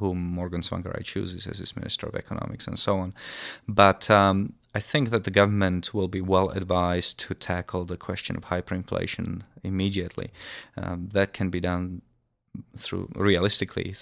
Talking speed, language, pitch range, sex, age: 165 wpm, English, 90-100 Hz, male, 30-49